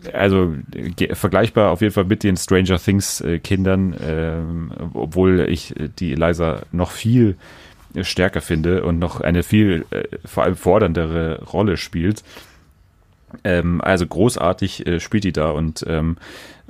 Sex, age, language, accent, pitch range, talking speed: male, 30-49, German, German, 80-95 Hz, 135 wpm